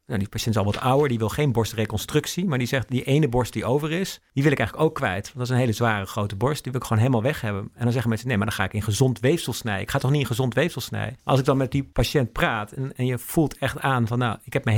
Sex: male